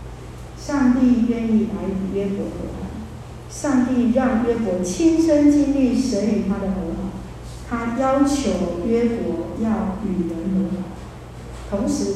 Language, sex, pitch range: Chinese, female, 185-245 Hz